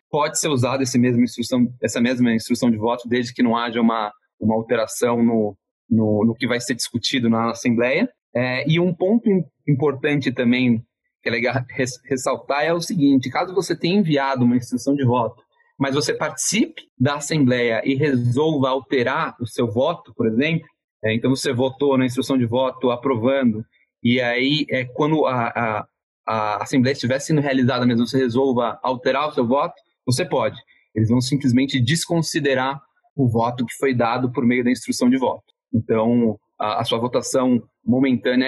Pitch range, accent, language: 120-145 Hz, Brazilian, Portuguese